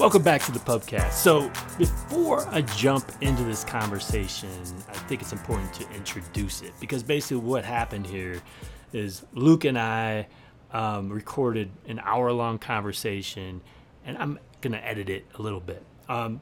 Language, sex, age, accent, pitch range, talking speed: English, male, 30-49, American, 105-135 Hz, 155 wpm